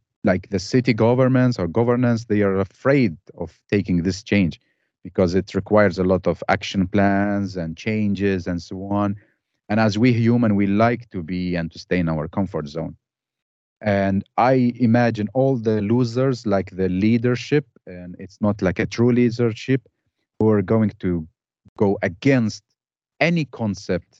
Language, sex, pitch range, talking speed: English, male, 90-120 Hz, 160 wpm